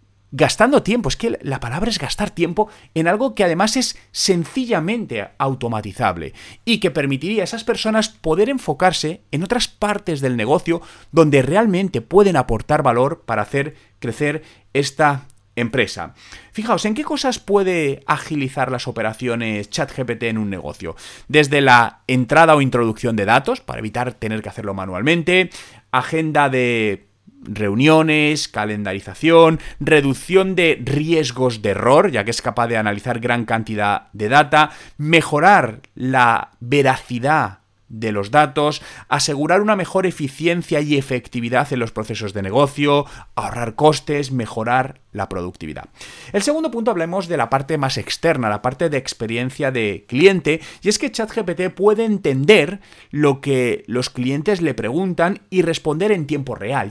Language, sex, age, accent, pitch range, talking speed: Spanish, male, 30-49, Spanish, 120-170 Hz, 145 wpm